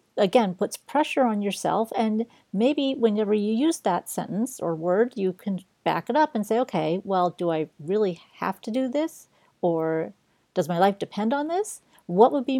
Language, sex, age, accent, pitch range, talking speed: English, female, 40-59, American, 190-240 Hz, 190 wpm